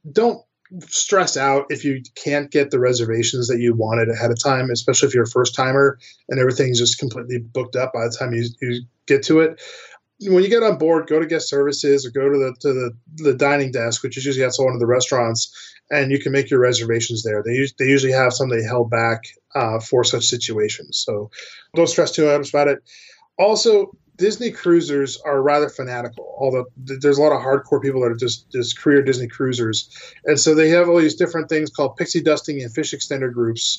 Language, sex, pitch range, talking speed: English, male, 125-155 Hz, 215 wpm